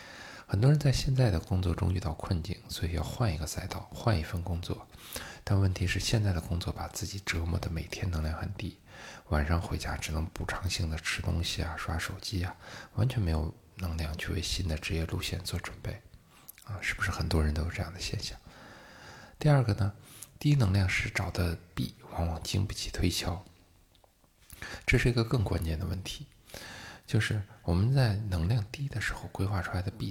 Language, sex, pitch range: Chinese, male, 85-105 Hz